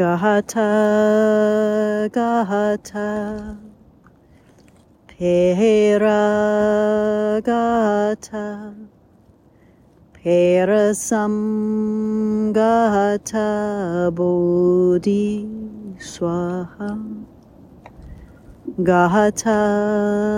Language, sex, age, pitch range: English, female, 30-49, 200-215 Hz